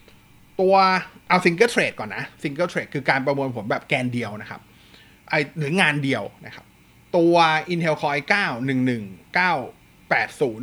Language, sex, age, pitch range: Thai, male, 30-49, 125-165 Hz